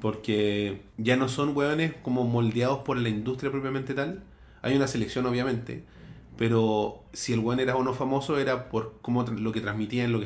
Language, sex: Spanish, male